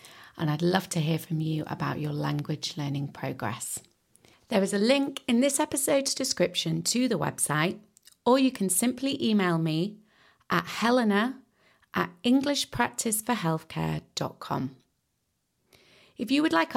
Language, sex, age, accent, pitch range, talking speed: English, female, 30-49, British, 160-230 Hz, 130 wpm